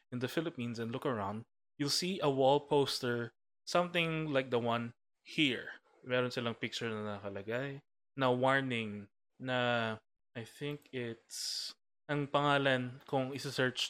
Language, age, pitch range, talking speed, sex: Filipino, 20-39, 120-145 Hz, 135 wpm, male